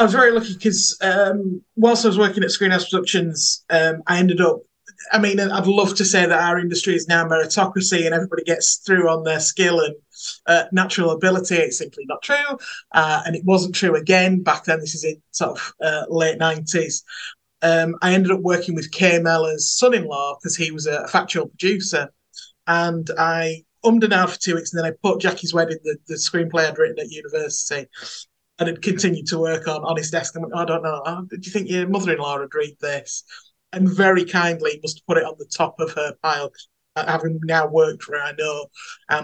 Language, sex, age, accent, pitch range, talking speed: English, male, 30-49, British, 160-190 Hz, 215 wpm